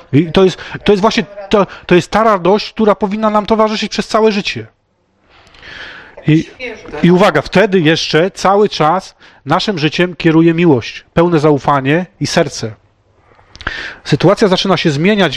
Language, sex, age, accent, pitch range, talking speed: Polish, male, 30-49, native, 150-190 Hz, 130 wpm